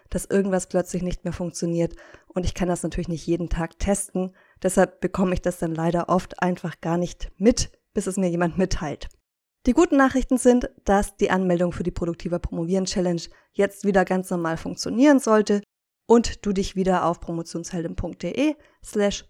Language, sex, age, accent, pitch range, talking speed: German, female, 20-39, German, 175-205 Hz, 170 wpm